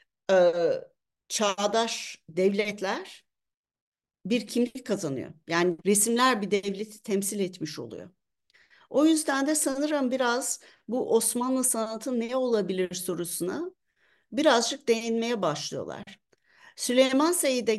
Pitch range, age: 190-255 Hz, 60-79